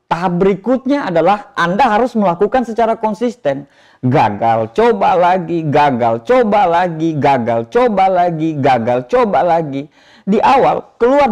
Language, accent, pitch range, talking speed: Indonesian, native, 150-230 Hz, 120 wpm